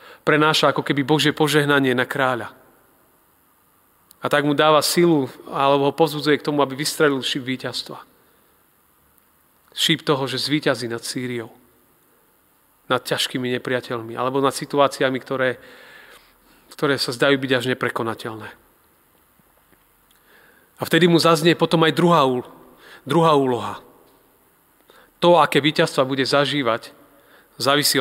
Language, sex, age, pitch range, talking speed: Slovak, male, 40-59, 125-150 Hz, 120 wpm